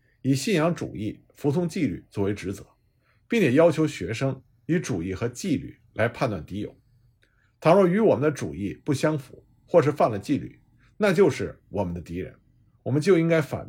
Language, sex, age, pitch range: Chinese, male, 50-69, 110-150 Hz